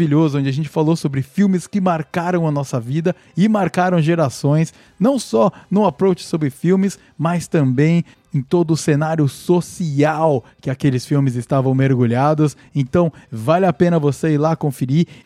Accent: Brazilian